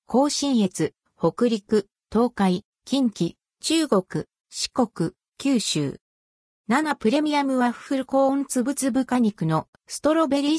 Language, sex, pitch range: Japanese, female, 180-270 Hz